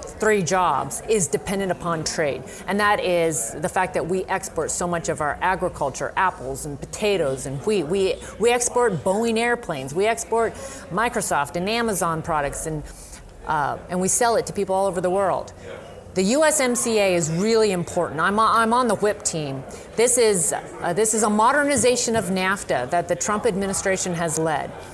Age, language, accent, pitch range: 30-49, English, American, 170-210 Hz